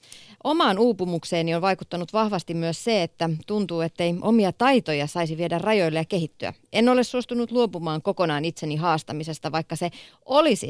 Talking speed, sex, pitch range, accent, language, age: 150 wpm, female, 160-210 Hz, native, Finnish, 30-49